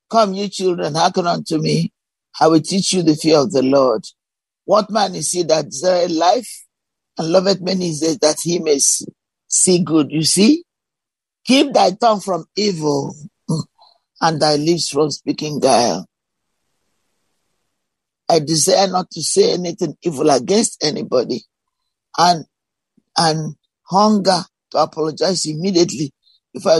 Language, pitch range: English, 160-200 Hz